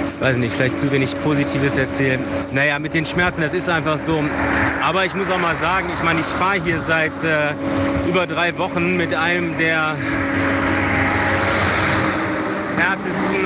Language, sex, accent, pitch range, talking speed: German, male, German, 125-160 Hz, 155 wpm